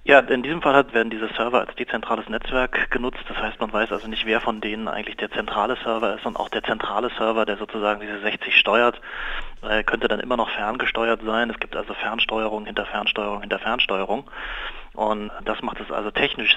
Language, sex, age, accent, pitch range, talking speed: German, male, 30-49, German, 105-115 Hz, 200 wpm